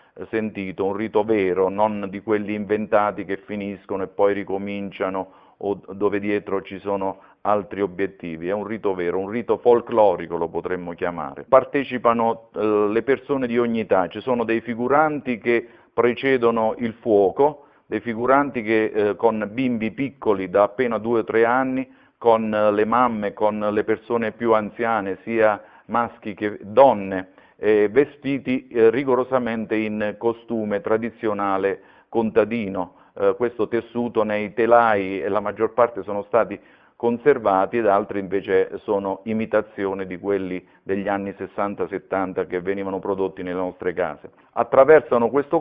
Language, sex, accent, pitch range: Italian, male, native, 100-120 Hz